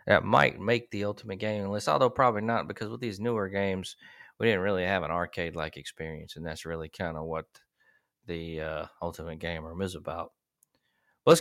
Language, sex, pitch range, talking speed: English, male, 80-110 Hz, 190 wpm